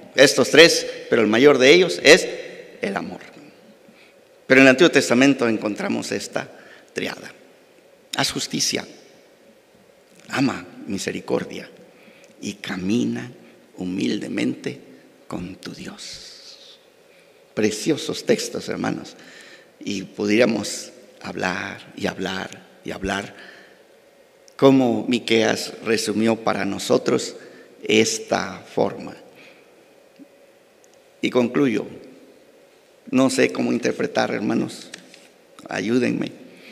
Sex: male